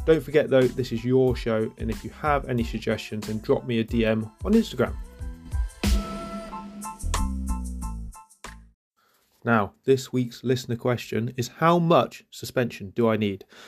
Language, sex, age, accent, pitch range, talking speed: English, male, 20-39, British, 115-135 Hz, 140 wpm